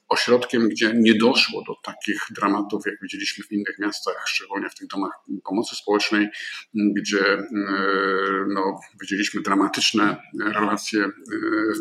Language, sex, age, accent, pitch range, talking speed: Polish, male, 50-69, native, 105-130 Hz, 120 wpm